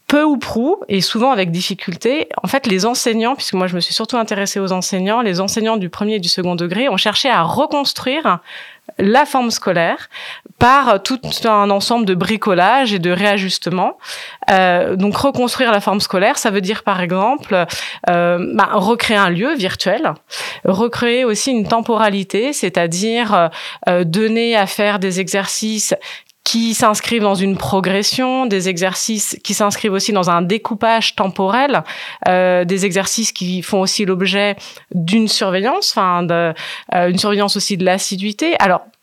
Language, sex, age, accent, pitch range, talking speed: French, female, 30-49, French, 190-230 Hz, 160 wpm